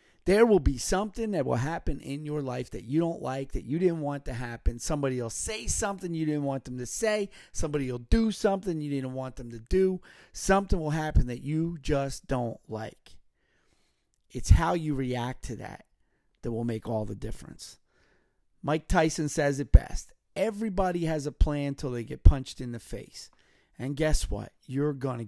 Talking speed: 195 wpm